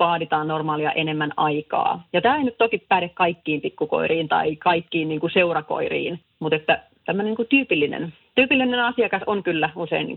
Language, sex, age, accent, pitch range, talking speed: Finnish, female, 30-49, native, 160-210 Hz, 170 wpm